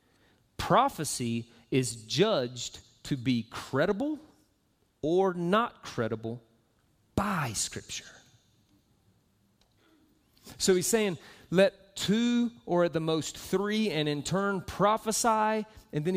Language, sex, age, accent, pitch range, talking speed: English, male, 30-49, American, 125-185 Hz, 100 wpm